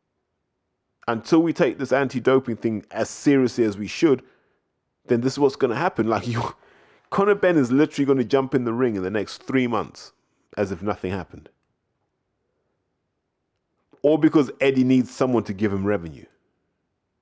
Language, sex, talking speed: English, male, 165 wpm